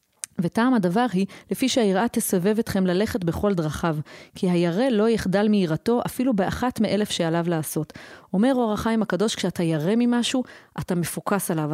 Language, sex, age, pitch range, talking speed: Hebrew, female, 30-49, 170-215 Hz, 155 wpm